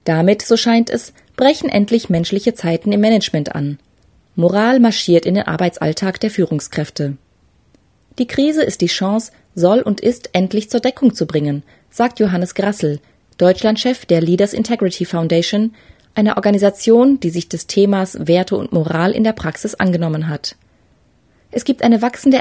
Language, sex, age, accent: German, female, 30-49, German